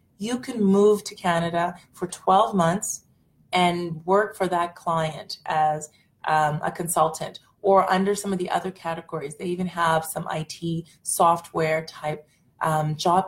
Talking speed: 150 wpm